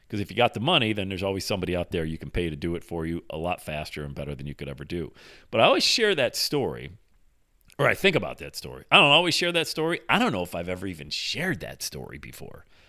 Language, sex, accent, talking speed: English, male, American, 275 wpm